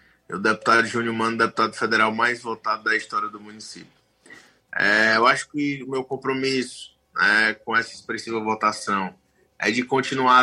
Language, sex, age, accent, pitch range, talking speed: Portuguese, male, 20-39, Brazilian, 105-120 Hz, 150 wpm